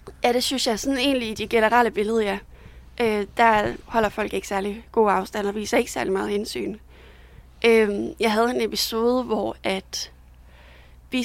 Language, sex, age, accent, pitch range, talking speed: Danish, female, 30-49, native, 200-235 Hz, 175 wpm